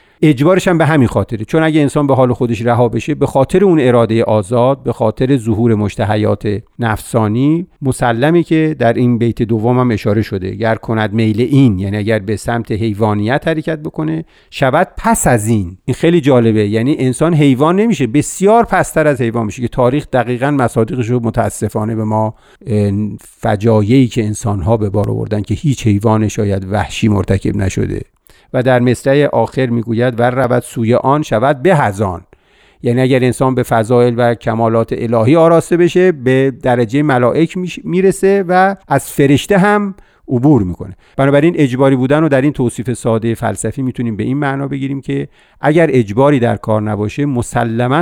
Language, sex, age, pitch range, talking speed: Persian, male, 50-69, 110-140 Hz, 165 wpm